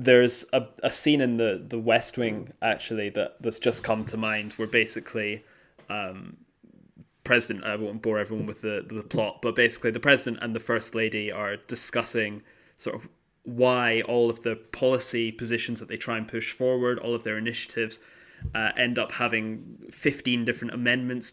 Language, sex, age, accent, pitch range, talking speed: English, male, 10-29, British, 110-125 Hz, 175 wpm